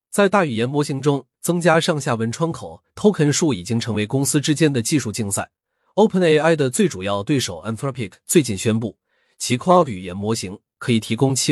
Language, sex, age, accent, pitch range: Chinese, male, 30-49, native, 105-155 Hz